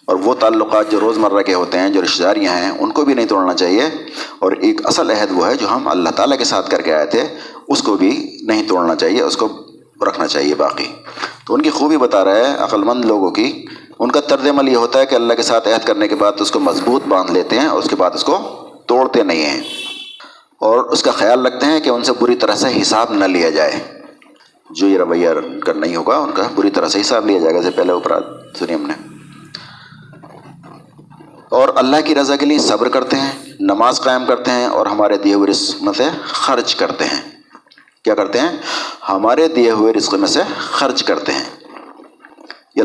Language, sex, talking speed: Urdu, male, 220 wpm